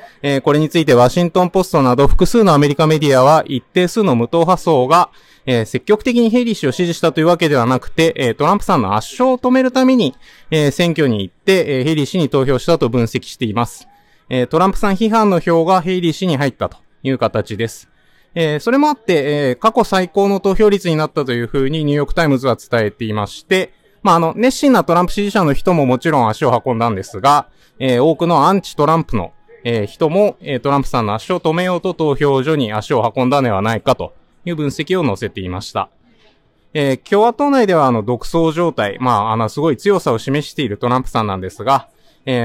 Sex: male